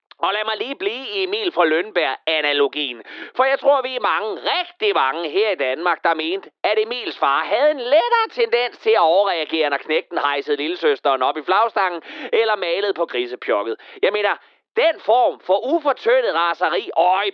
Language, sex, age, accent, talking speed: Danish, male, 30-49, native, 180 wpm